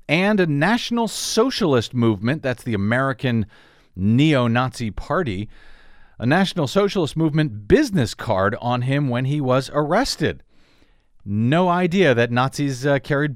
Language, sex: English, male